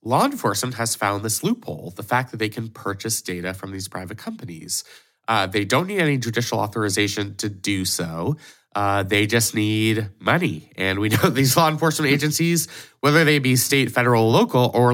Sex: male